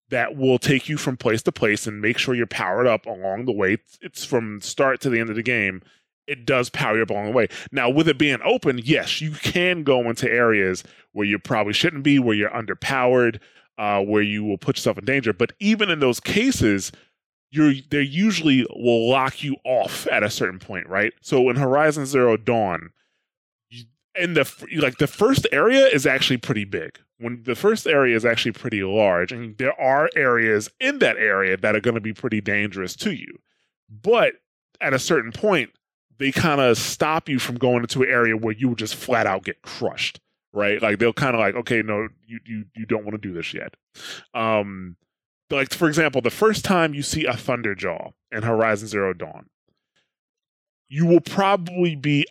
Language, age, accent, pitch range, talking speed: English, 20-39, American, 110-145 Hz, 205 wpm